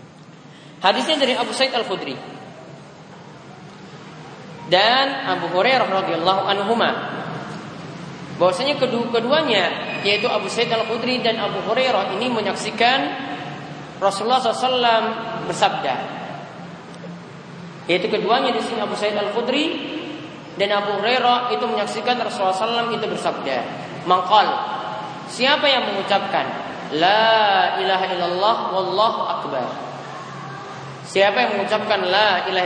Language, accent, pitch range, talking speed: Indonesian, native, 185-250 Hz, 95 wpm